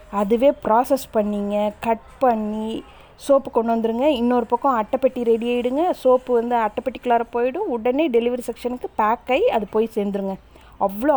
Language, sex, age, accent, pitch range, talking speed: Tamil, female, 20-39, native, 215-280 Hz, 150 wpm